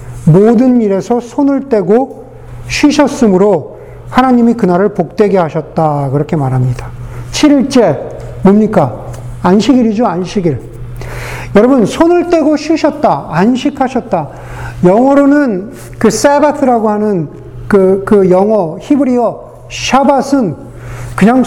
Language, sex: Korean, male